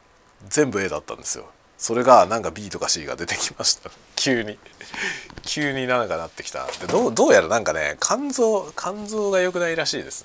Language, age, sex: Japanese, 40-59, male